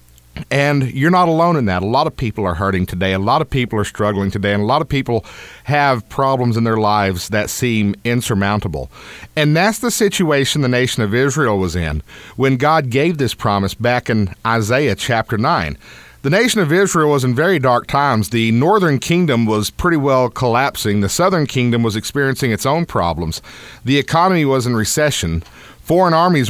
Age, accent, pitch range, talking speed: 40-59, American, 110-155 Hz, 190 wpm